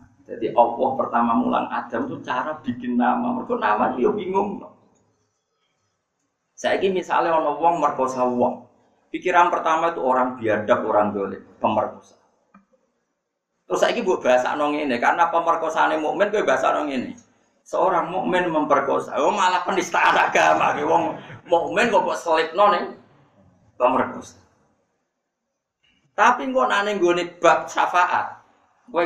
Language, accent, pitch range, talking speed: Indonesian, native, 125-205 Hz, 135 wpm